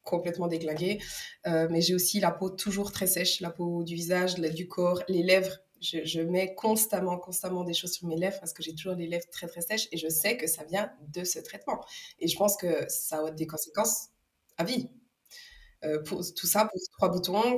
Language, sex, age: French, female, 20-39